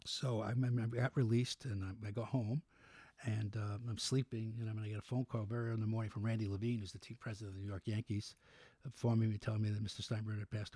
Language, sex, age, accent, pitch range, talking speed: English, male, 60-79, American, 115-130 Hz, 275 wpm